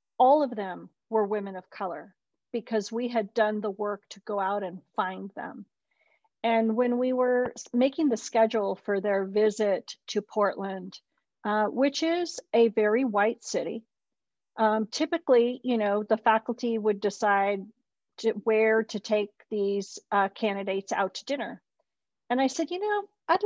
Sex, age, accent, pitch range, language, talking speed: female, 40-59, American, 200-250 Hz, English, 155 wpm